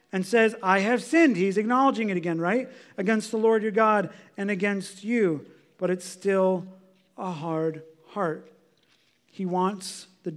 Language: English